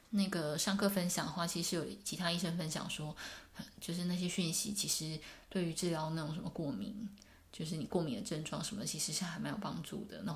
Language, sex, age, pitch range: Chinese, female, 20-39, 165-200 Hz